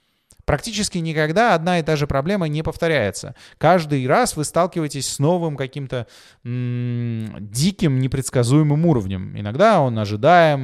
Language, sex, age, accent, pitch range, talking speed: Russian, male, 20-39, native, 115-160 Hz, 130 wpm